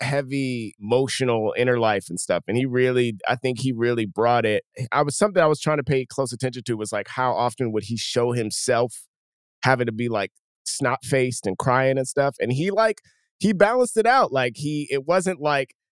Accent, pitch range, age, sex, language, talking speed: American, 120-155 Hz, 30-49, male, English, 210 wpm